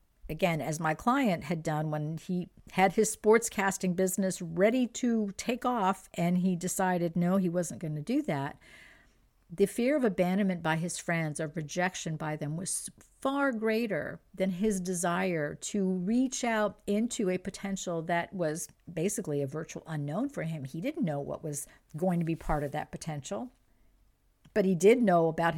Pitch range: 160-200 Hz